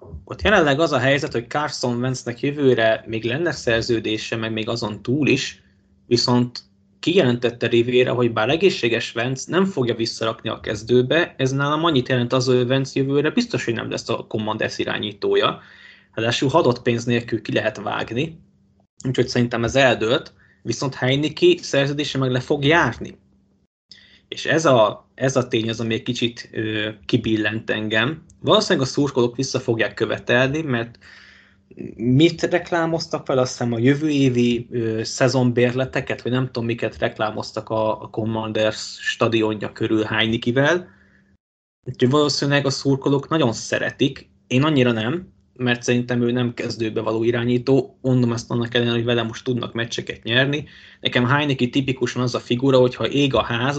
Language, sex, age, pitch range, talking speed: Hungarian, male, 20-39, 115-140 Hz, 155 wpm